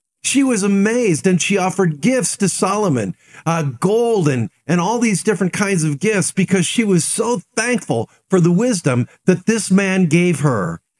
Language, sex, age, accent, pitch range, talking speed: English, male, 50-69, American, 150-215 Hz, 175 wpm